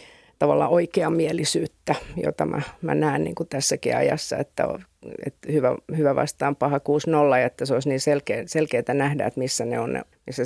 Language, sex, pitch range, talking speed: Finnish, female, 145-175 Hz, 185 wpm